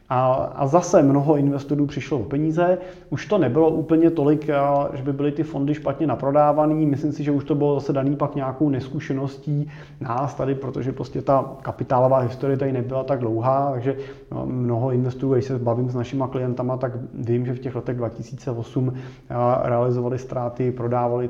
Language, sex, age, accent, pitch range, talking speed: Czech, male, 30-49, native, 125-150 Hz, 170 wpm